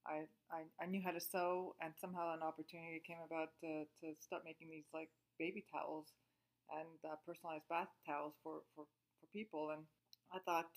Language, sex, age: English, female, 30-49